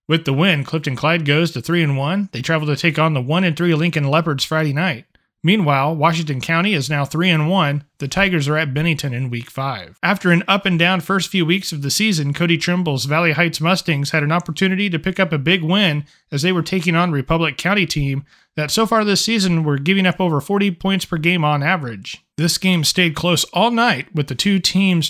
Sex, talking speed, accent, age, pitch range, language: male, 215 wpm, American, 30-49, 150-180 Hz, English